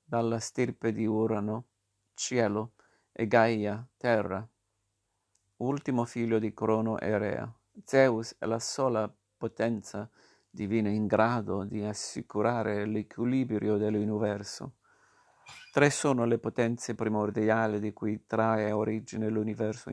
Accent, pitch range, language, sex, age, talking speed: native, 105-120 Hz, Italian, male, 50-69, 110 wpm